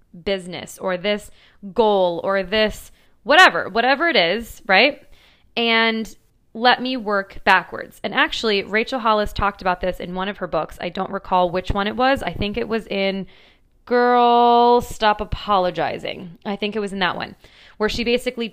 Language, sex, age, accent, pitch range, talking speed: English, female, 20-39, American, 190-245 Hz, 170 wpm